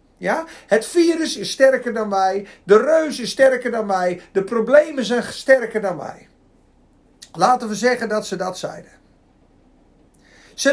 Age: 50-69